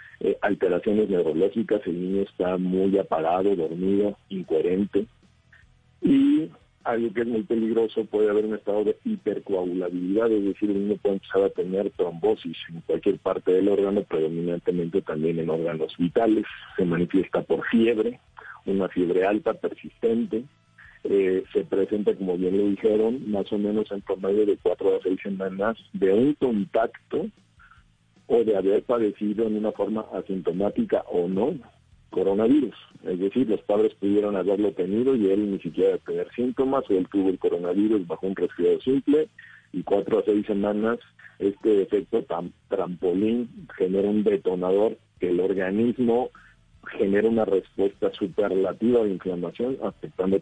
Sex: male